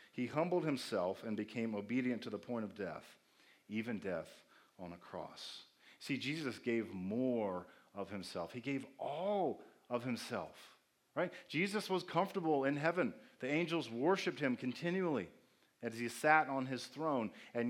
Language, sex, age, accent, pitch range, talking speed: English, male, 40-59, American, 110-145 Hz, 155 wpm